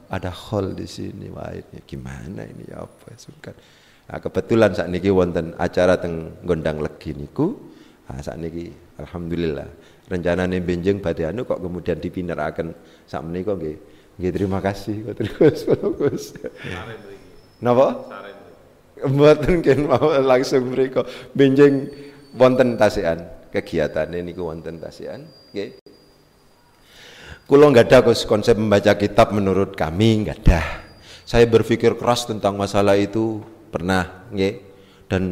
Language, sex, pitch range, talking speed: Indonesian, male, 90-110 Hz, 125 wpm